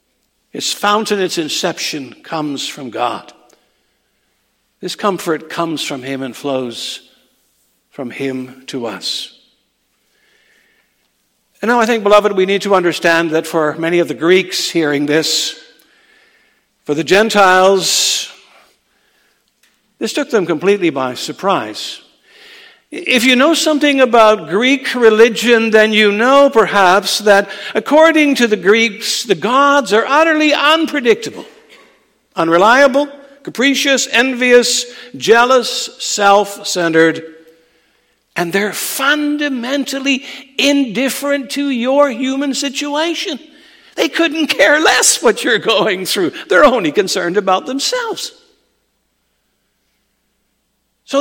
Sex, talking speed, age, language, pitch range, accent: male, 110 wpm, 60-79, English, 190-290 Hz, American